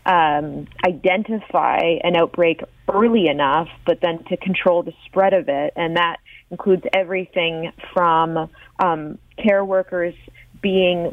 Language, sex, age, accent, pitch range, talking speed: English, female, 30-49, American, 175-210 Hz, 125 wpm